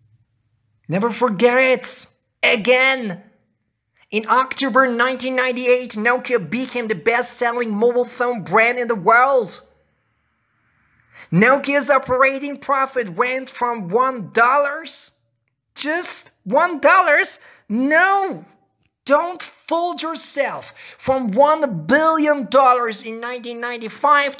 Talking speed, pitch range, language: 90 wpm, 215-270 Hz, Persian